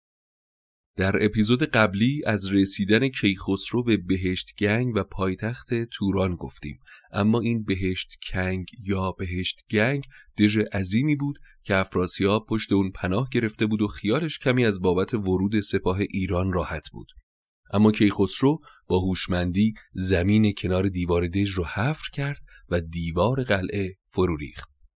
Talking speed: 135 wpm